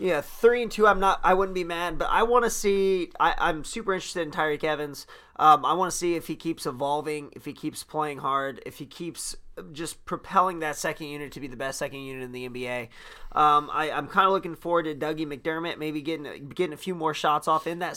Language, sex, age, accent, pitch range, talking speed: English, male, 20-39, American, 135-170 Hz, 235 wpm